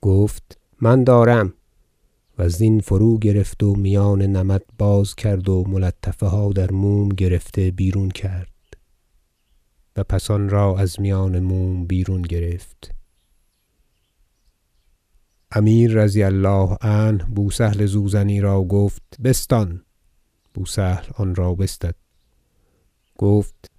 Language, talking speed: Persian, 110 wpm